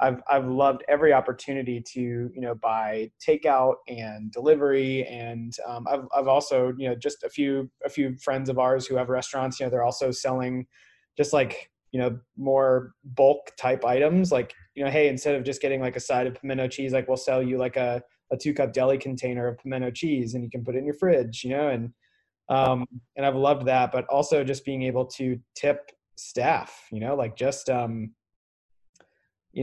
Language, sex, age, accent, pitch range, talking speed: English, male, 20-39, American, 120-135 Hz, 205 wpm